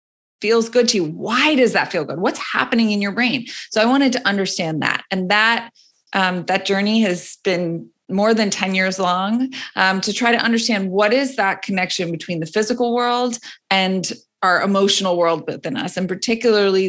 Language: English